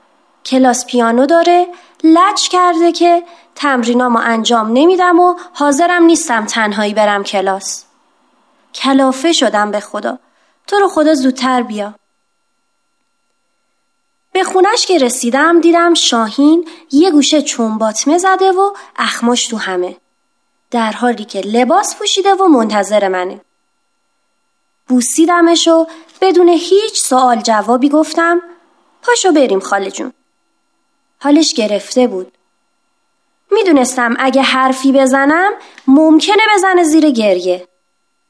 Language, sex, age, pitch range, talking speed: Persian, female, 20-39, 235-345 Hz, 105 wpm